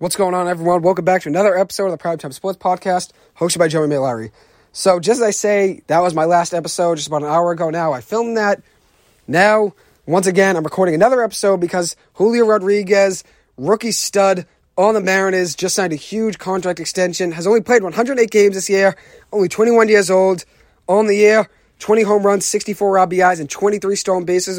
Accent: American